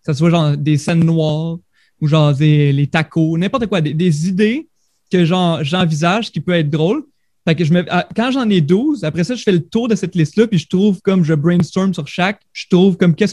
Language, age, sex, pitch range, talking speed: French, 30-49, male, 155-190 Hz, 240 wpm